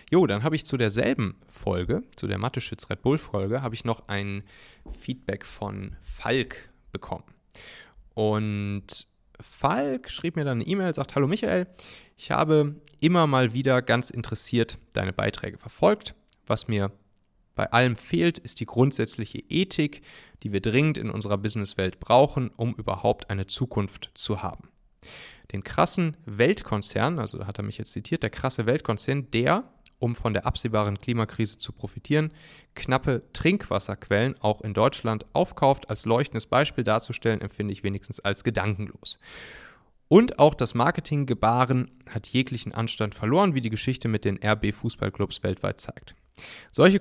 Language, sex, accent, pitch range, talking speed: German, male, German, 105-135 Hz, 145 wpm